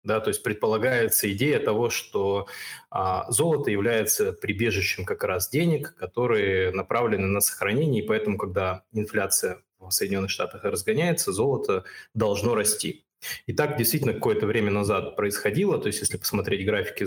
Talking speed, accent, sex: 135 wpm, native, male